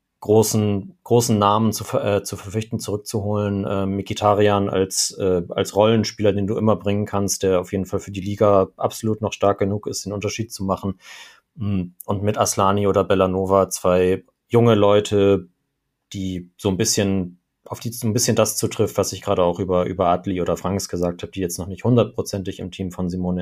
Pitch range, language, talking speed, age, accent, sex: 95-110 Hz, German, 190 wpm, 30-49, German, male